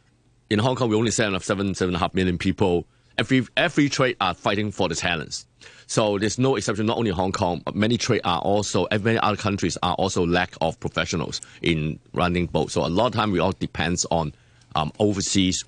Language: English